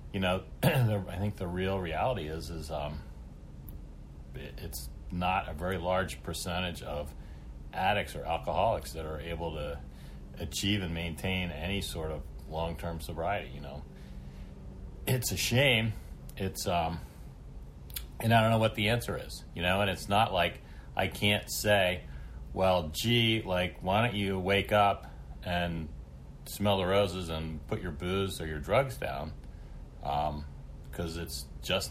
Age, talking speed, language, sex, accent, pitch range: 40-59, 150 wpm, English, male, American, 70-100 Hz